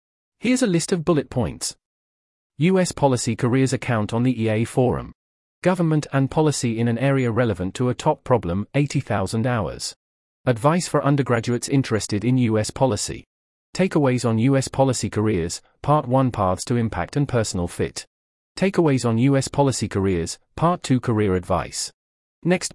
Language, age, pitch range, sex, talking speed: English, 40-59, 100-140 Hz, male, 150 wpm